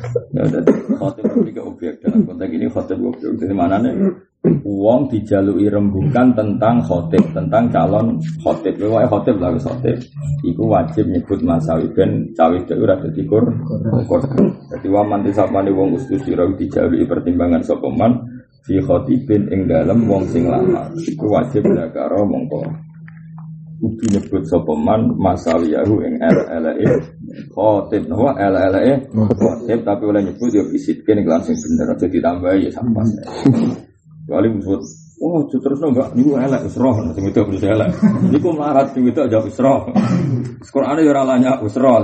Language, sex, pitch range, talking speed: Indonesian, male, 105-145 Hz, 145 wpm